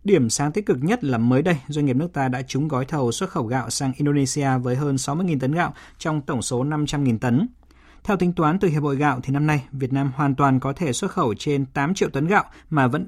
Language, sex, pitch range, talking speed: Vietnamese, male, 125-155 Hz, 255 wpm